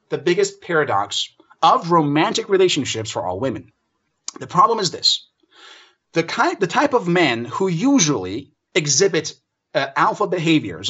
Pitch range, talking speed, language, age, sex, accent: 135-190 Hz, 130 wpm, English, 30-49, male, American